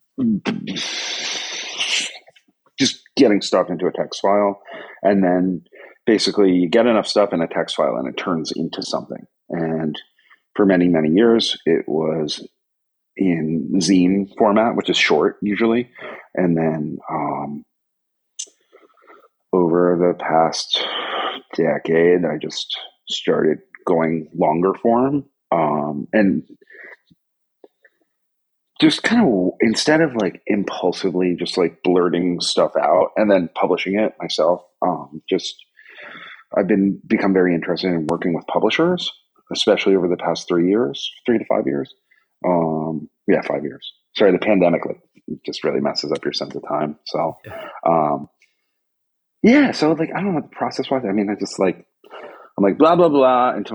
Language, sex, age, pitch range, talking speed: English, male, 40-59, 85-120 Hz, 145 wpm